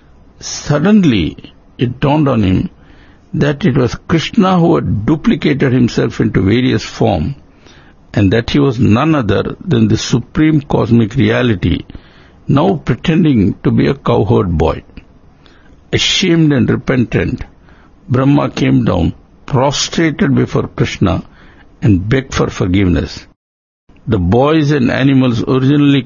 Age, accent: 60-79, Indian